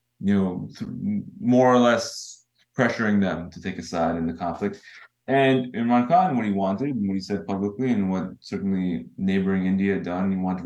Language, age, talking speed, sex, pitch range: English, 20-39, 195 wpm, male, 95-125 Hz